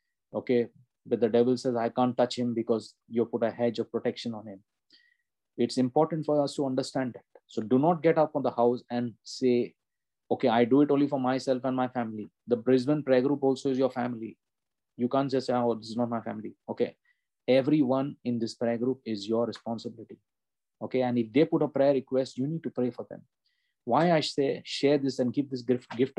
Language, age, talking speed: English, 20-39, 220 wpm